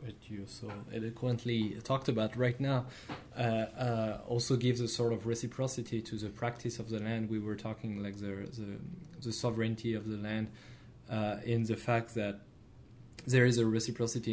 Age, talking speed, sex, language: 20-39, 170 wpm, male, English